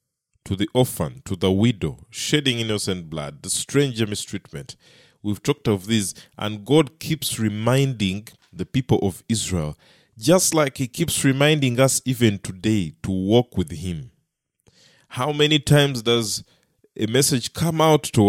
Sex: male